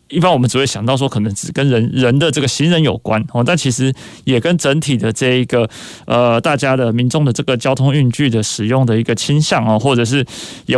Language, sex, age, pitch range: Chinese, male, 20-39, 120-145 Hz